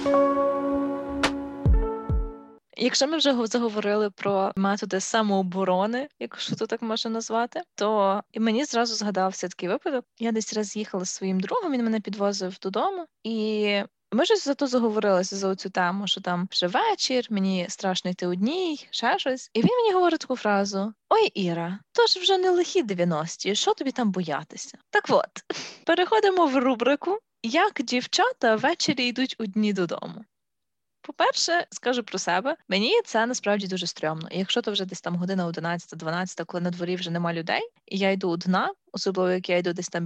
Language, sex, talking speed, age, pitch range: Ukrainian, female, 165 wpm, 20-39, 185-270 Hz